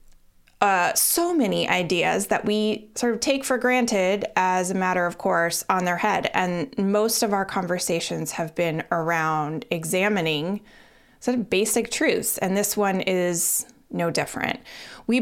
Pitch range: 175-230 Hz